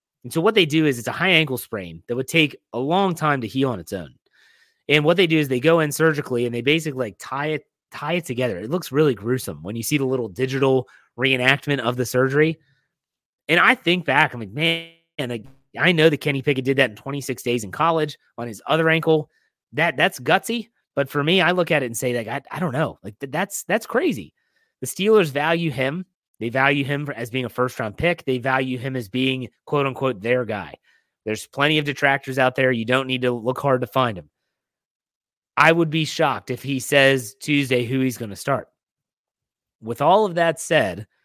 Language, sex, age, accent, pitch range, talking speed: English, male, 30-49, American, 125-155 Hz, 220 wpm